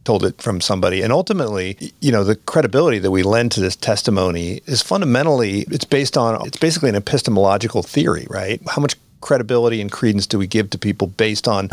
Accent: American